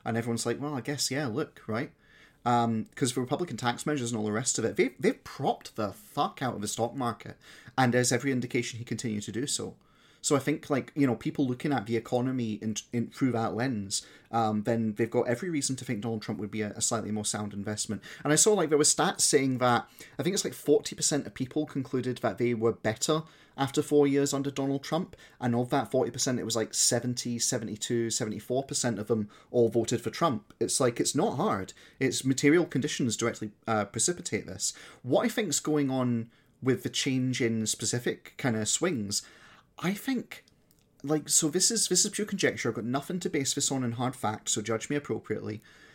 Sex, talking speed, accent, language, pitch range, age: male, 220 wpm, British, English, 115-140 Hz, 30-49